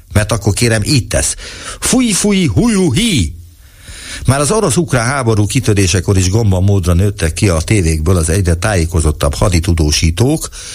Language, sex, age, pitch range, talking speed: Hungarian, male, 60-79, 85-115 Hz, 135 wpm